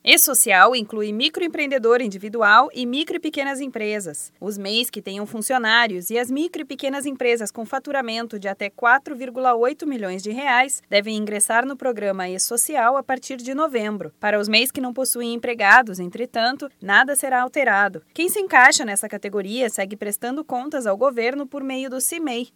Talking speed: 165 wpm